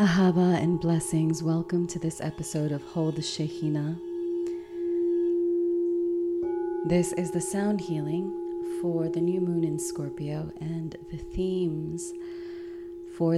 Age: 30-49